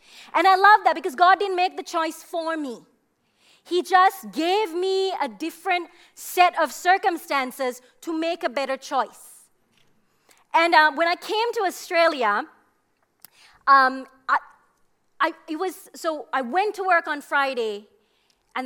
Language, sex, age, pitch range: English, female, 30-49, 255-360 Hz